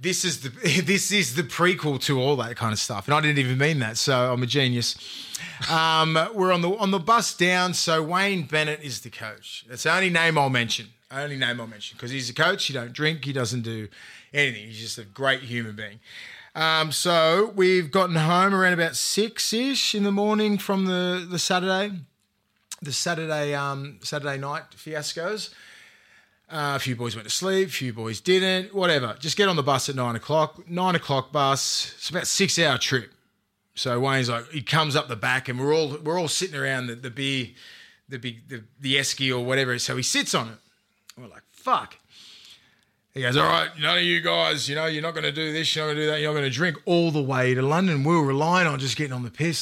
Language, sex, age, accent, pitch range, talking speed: English, male, 20-39, Australian, 130-175 Hz, 230 wpm